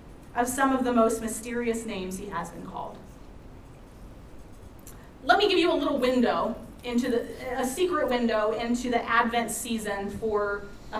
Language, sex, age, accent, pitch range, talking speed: English, female, 30-49, American, 230-285 Hz, 160 wpm